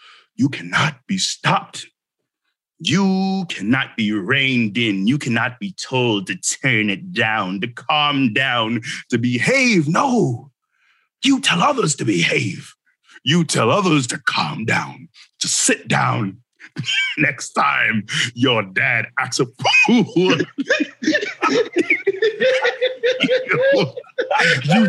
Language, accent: English, American